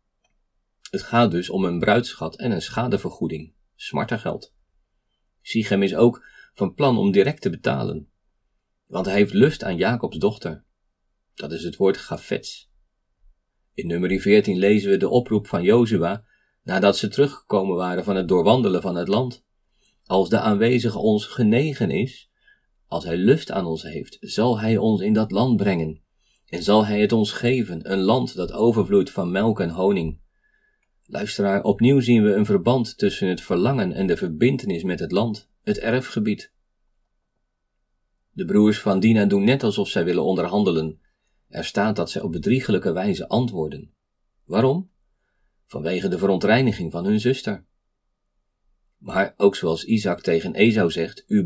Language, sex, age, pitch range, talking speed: Dutch, male, 40-59, 95-120 Hz, 155 wpm